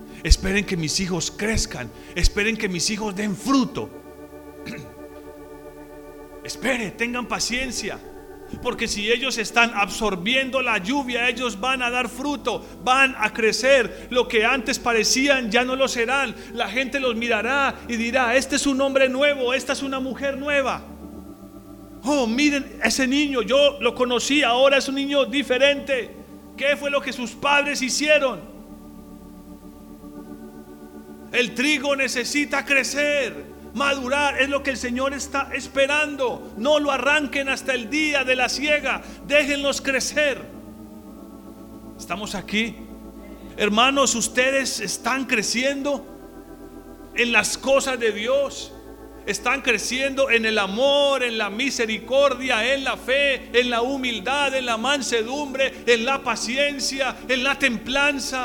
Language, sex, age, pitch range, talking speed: Spanish, male, 40-59, 220-275 Hz, 130 wpm